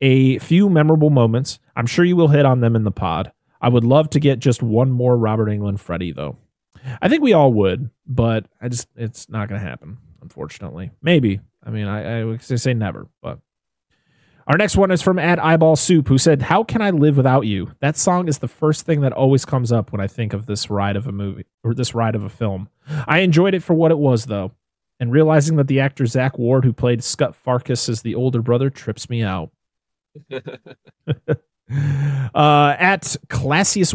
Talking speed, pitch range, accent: 210 wpm, 115-155 Hz, American